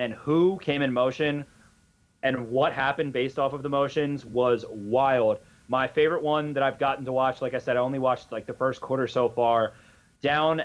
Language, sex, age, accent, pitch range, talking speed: English, male, 30-49, American, 125-140 Hz, 205 wpm